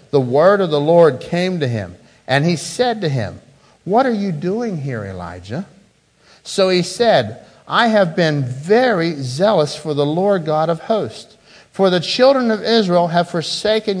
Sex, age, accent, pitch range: male, 50-69, American, 160-215 Hz